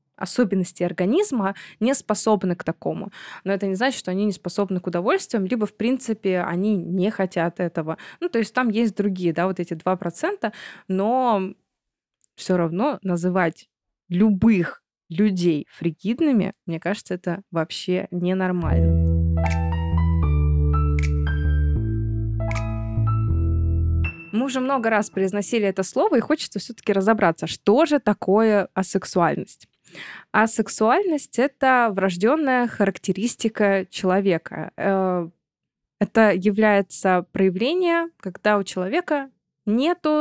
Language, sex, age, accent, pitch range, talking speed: Russian, female, 20-39, native, 175-230 Hz, 110 wpm